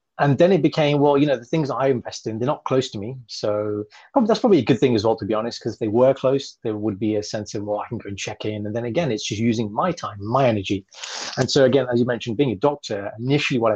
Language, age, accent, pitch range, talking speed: English, 20-39, British, 110-135 Hz, 290 wpm